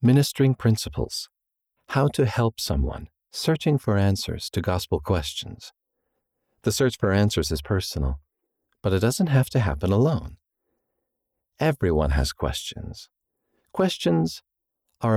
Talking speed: 120 wpm